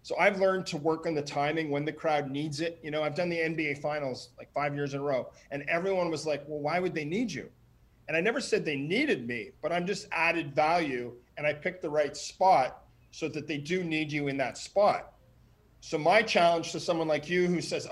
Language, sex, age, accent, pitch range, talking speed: English, male, 40-59, American, 155-195 Hz, 240 wpm